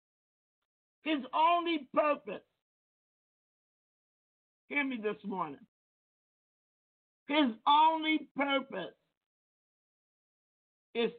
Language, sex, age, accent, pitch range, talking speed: English, male, 50-69, American, 220-295 Hz, 60 wpm